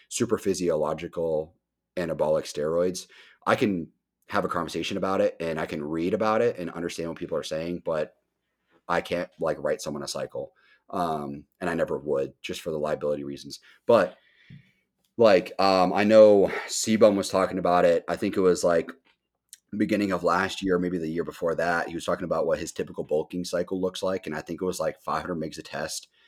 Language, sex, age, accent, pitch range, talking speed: English, male, 30-49, American, 80-100 Hz, 195 wpm